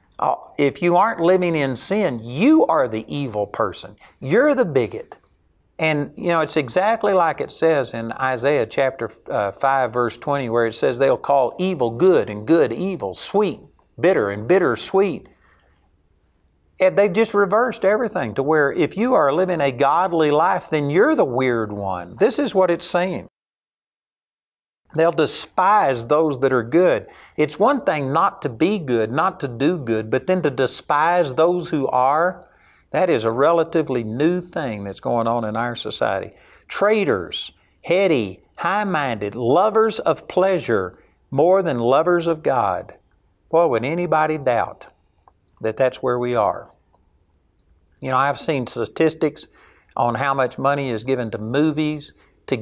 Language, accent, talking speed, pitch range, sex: English, American, 160 wpm, 115-175 Hz, male